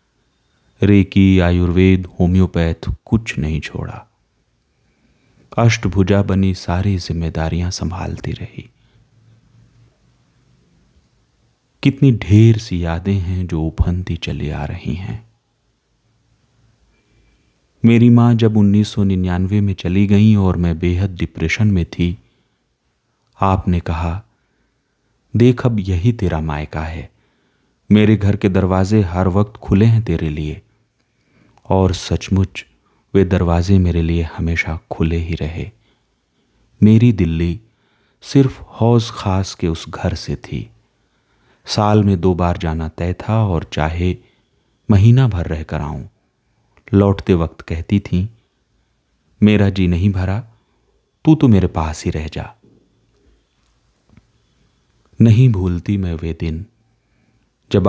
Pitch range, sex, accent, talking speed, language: 85-110 Hz, male, native, 115 wpm, Hindi